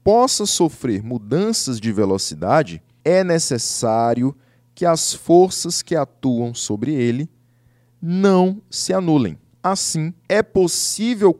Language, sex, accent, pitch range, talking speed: Portuguese, male, Brazilian, 120-175 Hz, 105 wpm